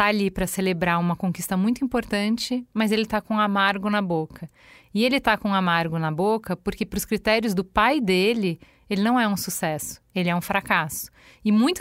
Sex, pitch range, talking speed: female, 190-240 Hz, 205 wpm